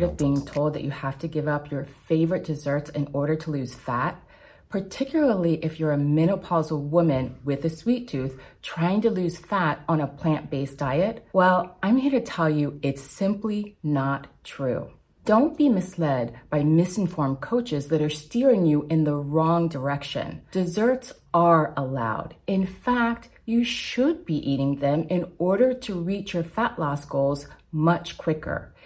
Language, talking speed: English, 165 wpm